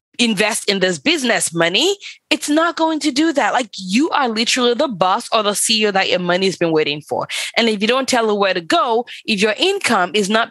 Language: English